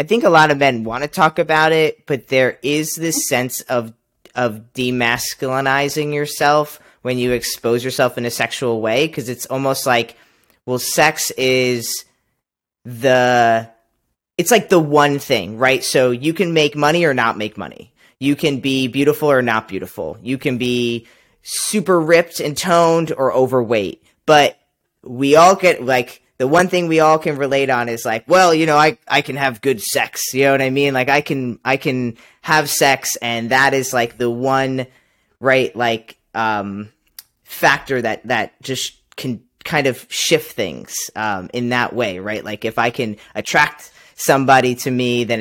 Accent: American